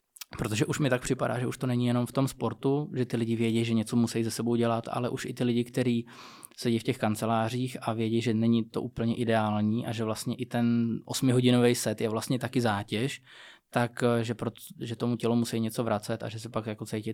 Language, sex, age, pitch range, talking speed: Czech, male, 20-39, 110-120 Hz, 230 wpm